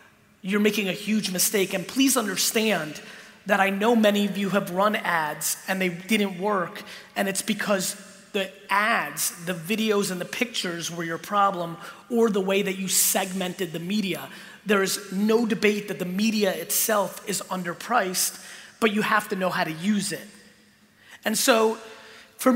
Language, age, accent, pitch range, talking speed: English, 30-49, American, 190-220 Hz, 170 wpm